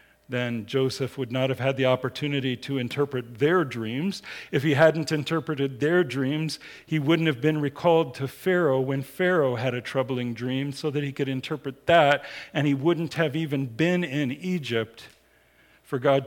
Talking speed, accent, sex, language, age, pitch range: 175 wpm, American, male, English, 50-69, 115-155 Hz